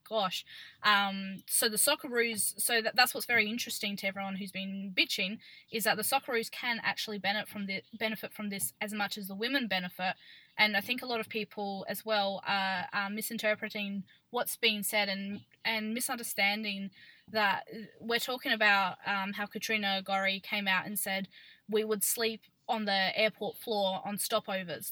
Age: 10-29